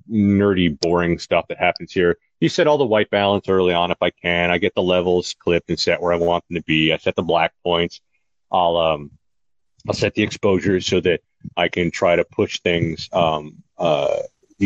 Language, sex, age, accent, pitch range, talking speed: English, male, 30-49, American, 80-105 Hz, 210 wpm